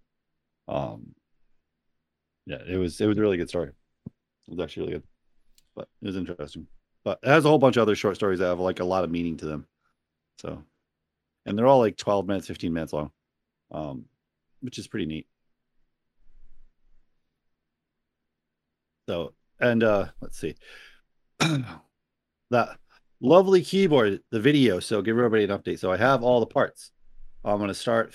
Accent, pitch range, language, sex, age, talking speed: American, 80-115 Hz, English, male, 40-59, 165 wpm